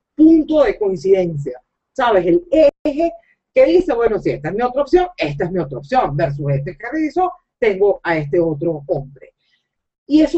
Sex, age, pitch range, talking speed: female, 40-59, 220-335 Hz, 180 wpm